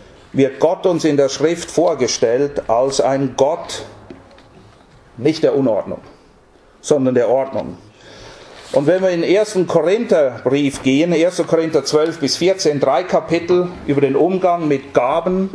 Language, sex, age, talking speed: English, male, 50-69, 135 wpm